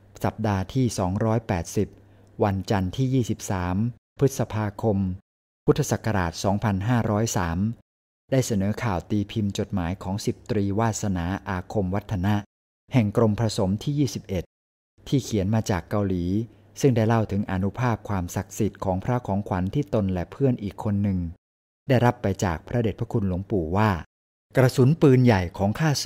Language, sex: Thai, male